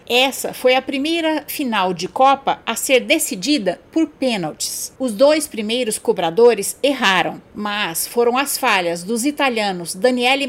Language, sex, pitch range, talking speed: Portuguese, female, 220-285 Hz, 135 wpm